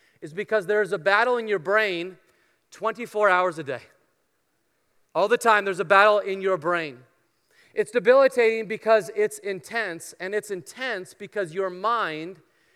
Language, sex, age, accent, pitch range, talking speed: English, male, 30-49, American, 195-245 Hz, 150 wpm